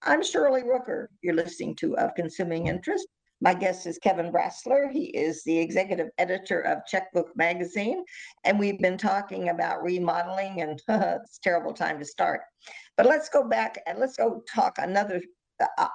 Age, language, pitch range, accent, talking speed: 50-69, English, 170-225 Hz, American, 170 wpm